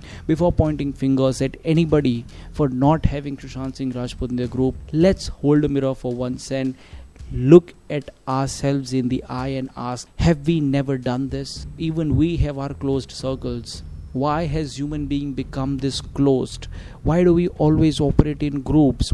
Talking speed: 170 wpm